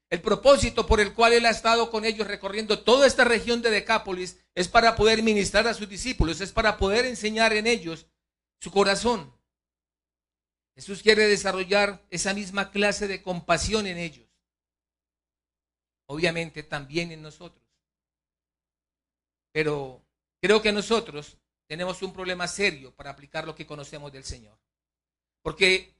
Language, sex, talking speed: Spanish, male, 140 wpm